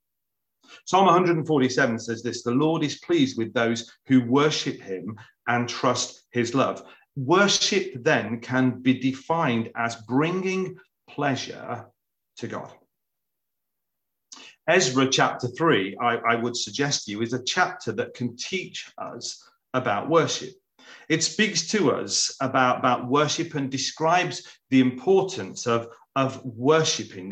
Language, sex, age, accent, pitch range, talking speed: English, male, 40-59, British, 120-160 Hz, 130 wpm